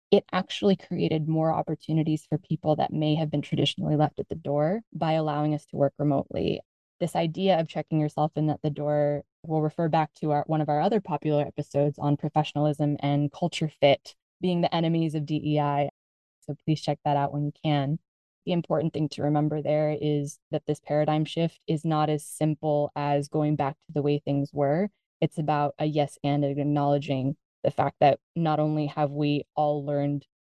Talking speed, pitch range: 190 wpm, 145-155 Hz